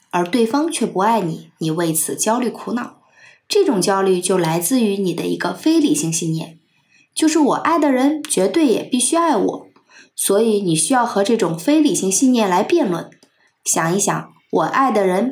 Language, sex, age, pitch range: Chinese, female, 20-39, 190-295 Hz